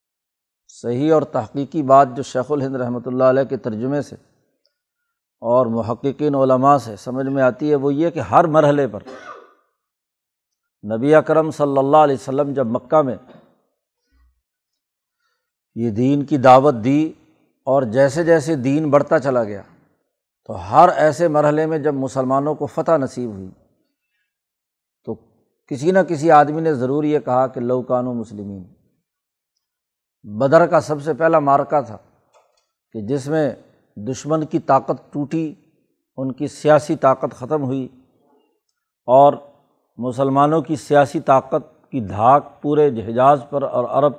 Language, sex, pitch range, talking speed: Urdu, male, 130-155 Hz, 140 wpm